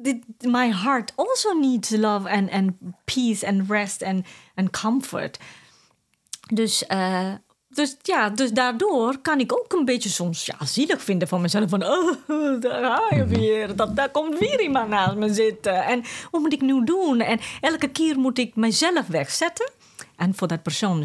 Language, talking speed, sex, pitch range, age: Dutch, 165 wpm, female, 185-260 Hz, 30-49